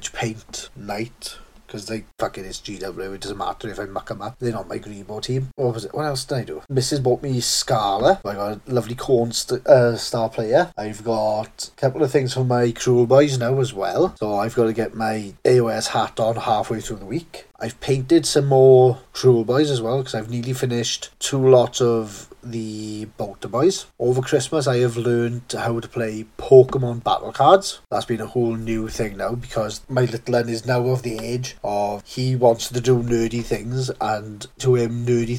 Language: English